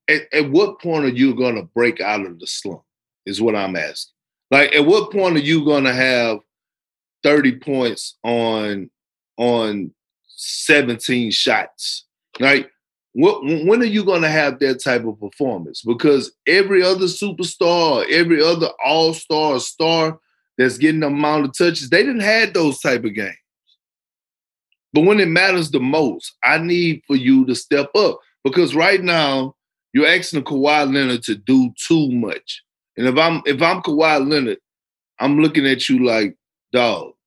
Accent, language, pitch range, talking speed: American, English, 125-160 Hz, 165 wpm